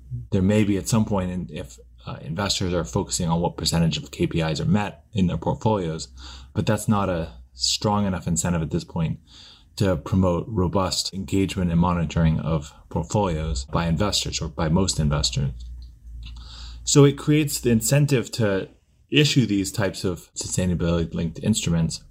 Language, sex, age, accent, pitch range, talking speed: English, male, 30-49, American, 85-105 Hz, 155 wpm